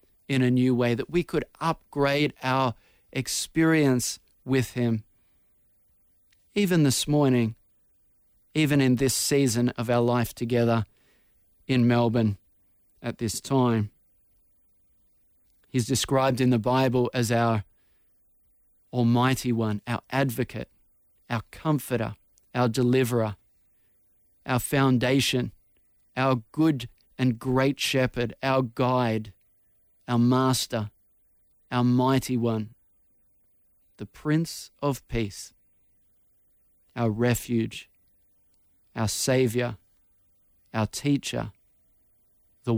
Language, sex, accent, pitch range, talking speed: English, male, Australian, 100-130 Hz, 95 wpm